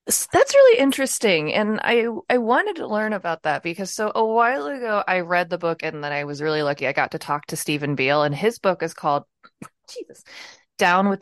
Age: 20-39